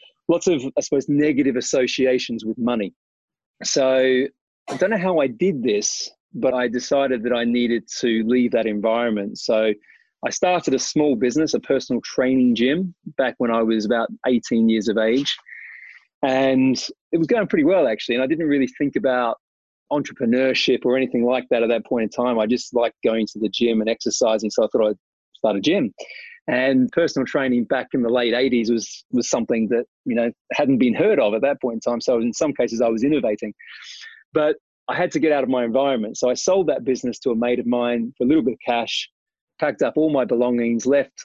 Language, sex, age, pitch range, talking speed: English, male, 30-49, 120-145 Hz, 210 wpm